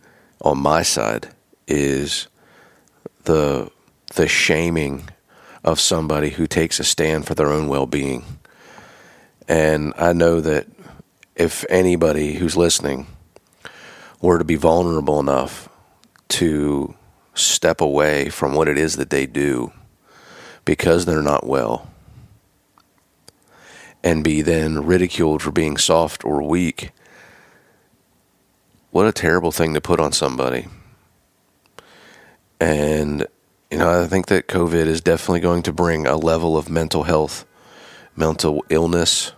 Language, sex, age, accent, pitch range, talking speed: English, male, 40-59, American, 75-85 Hz, 120 wpm